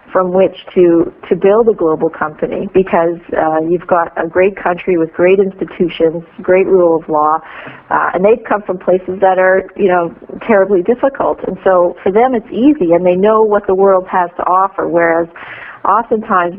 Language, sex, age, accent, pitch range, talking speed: English, female, 50-69, American, 170-205 Hz, 190 wpm